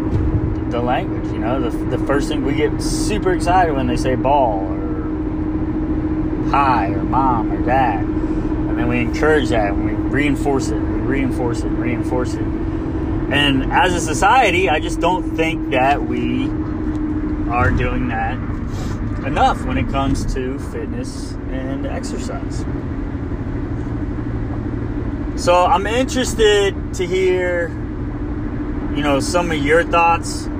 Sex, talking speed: male, 135 wpm